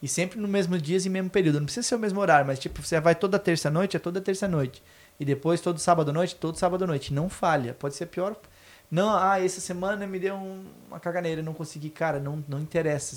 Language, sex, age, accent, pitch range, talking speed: Portuguese, male, 20-39, Brazilian, 145-190 Hz, 230 wpm